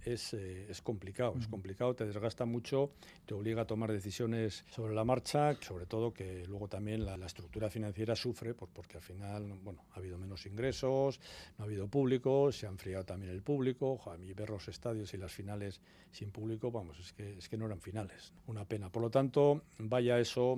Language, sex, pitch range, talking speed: Spanish, male, 100-120 Hz, 200 wpm